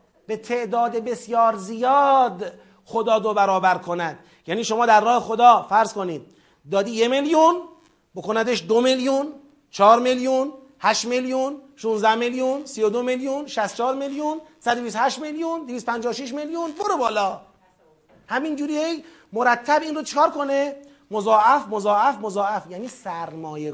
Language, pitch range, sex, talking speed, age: Persian, 200-270 Hz, male, 130 wpm, 40-59